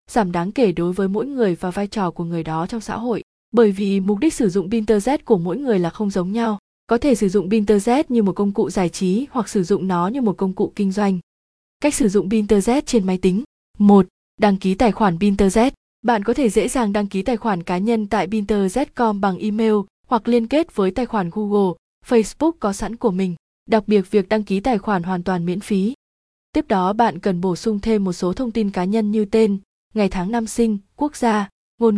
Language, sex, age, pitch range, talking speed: Vietnamese, female, 20-39, 190-230 Hz, 235 wpm